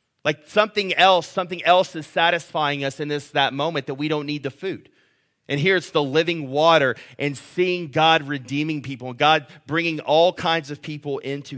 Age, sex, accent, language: 30-49, male, American, English